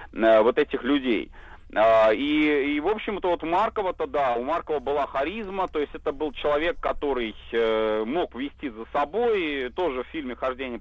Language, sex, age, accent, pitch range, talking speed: Russian, male, 30-49, native, 125-170 Hz, 160 wpm